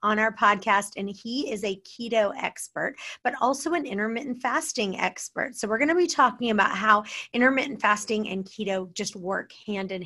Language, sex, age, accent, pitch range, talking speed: English, female, 30-49, American, 195-240 Hz, 185 wpm